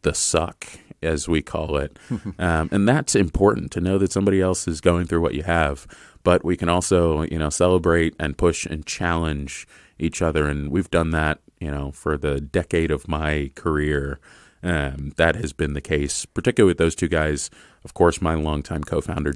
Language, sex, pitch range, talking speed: English, male, 75-85 Hz, 190 wpm